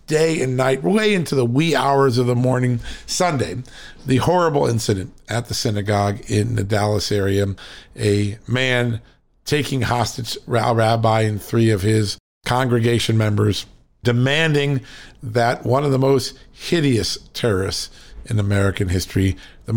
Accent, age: American, 50-69